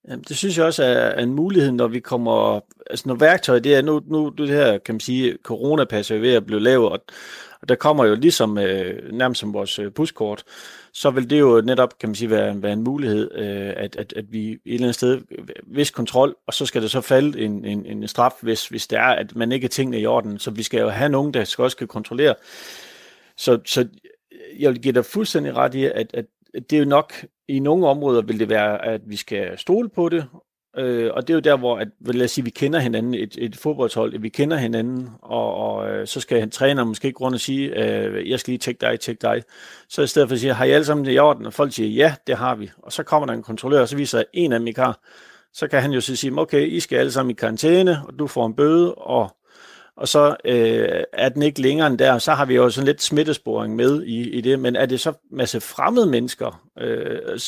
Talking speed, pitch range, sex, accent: 250 wpm, 115-145 Hz, male, native